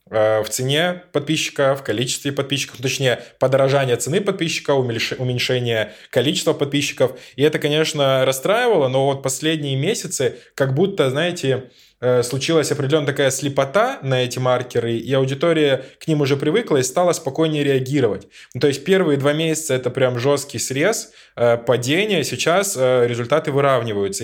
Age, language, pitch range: 20-39, Russian, 120-145 Hz